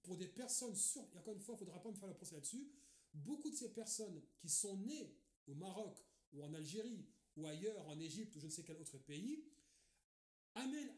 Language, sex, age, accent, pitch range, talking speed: French, male, 40-59, French, 160-230 Hz, 225 wpm